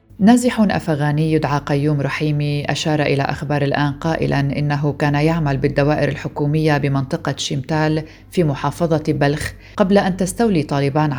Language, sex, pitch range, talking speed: Arabic, female, 145-165 Hz, 130 wpm